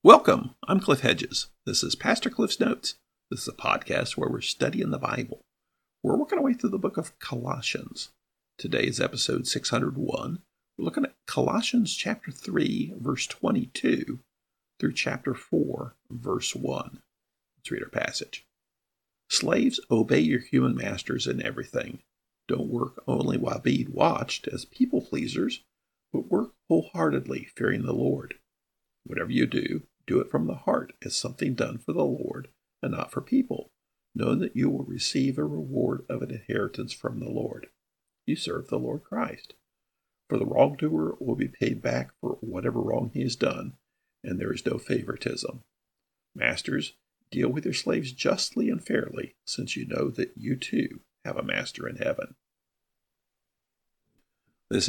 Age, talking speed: 50-69, 155 wpm